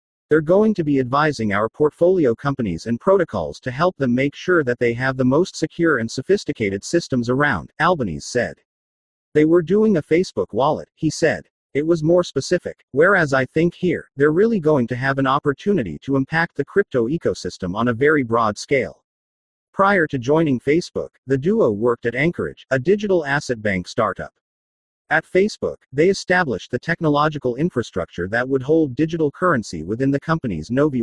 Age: 40-59